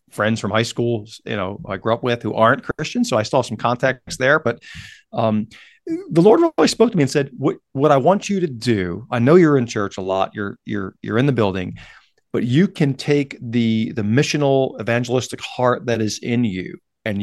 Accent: American